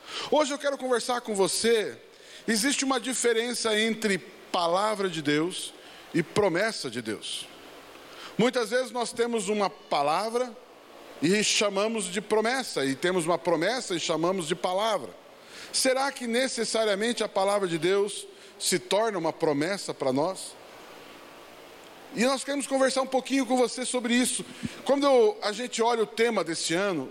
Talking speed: 145 wpm